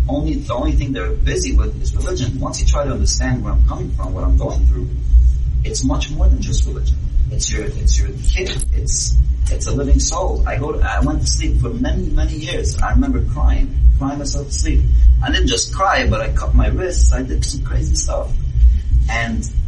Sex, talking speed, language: male, 215 wpm, English